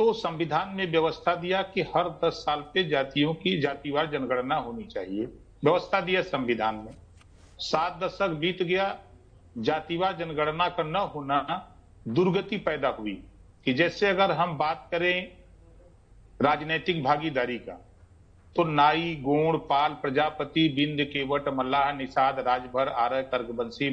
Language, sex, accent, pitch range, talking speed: Hindi, male, native, 125-185 Hz, 135 wpm